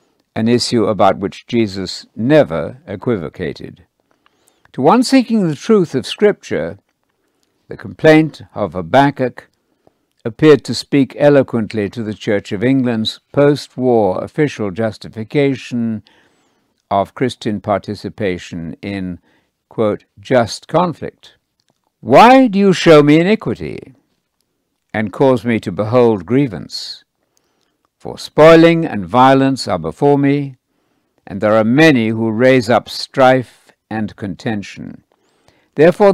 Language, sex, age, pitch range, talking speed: English, male, 60-79, 105-145 Hz, 110 wpm